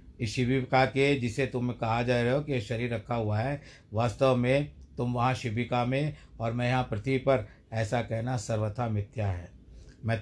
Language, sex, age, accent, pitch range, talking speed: Hindi, male, 60-79, native, 110-135 Hz, 180 wpm